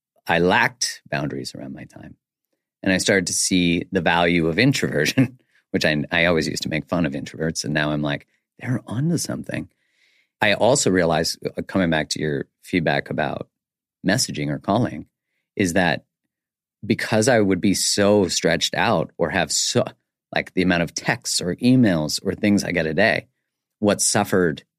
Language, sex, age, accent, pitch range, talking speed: English, male, 40-59, American, 85-105 Hz, 170 wpm